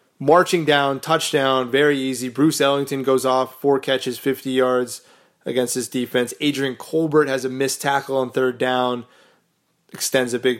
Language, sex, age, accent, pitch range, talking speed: English, male, 20-39, American, 130-150 Hz, 160 wpm